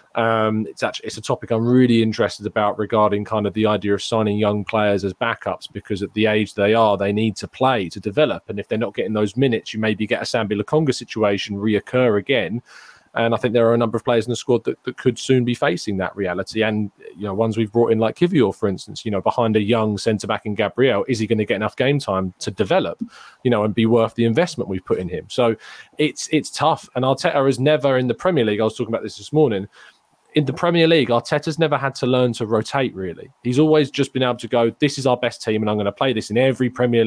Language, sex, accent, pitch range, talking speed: English, male, British, 105-125 Hz, 260 wpm